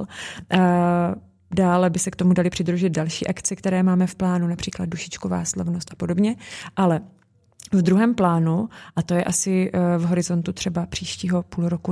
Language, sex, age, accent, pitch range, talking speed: Czech, female, 20-39, native, 170-185 Hz, 160 wpm